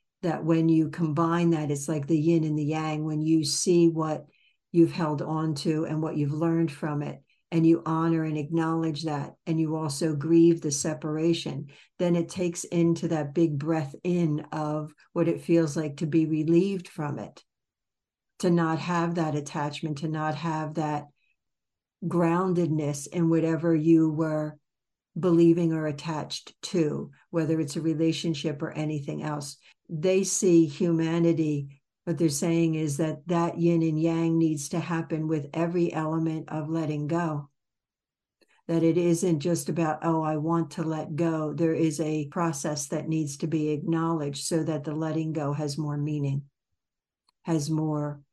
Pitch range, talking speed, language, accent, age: 155-170 Hz, 165 wpm, English, American, 60-79